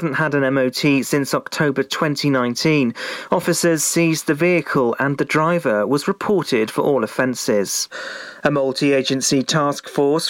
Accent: British